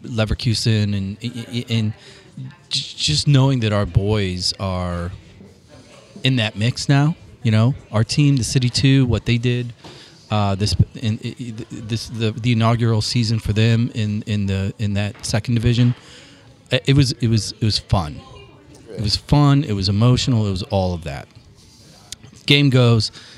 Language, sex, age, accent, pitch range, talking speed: English, male, 30-49, American, 100-120 Hz, 155 wpm